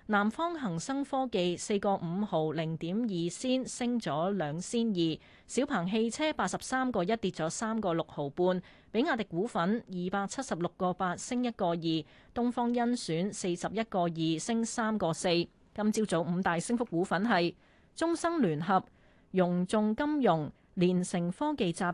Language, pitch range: Chinese, 175-235 Hz